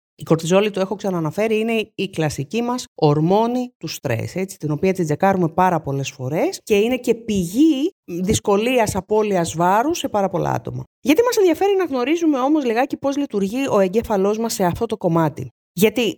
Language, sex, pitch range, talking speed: Greek, female, 160-245 Hz, 175 wpm